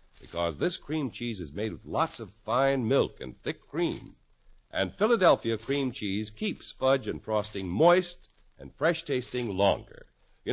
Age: 60-79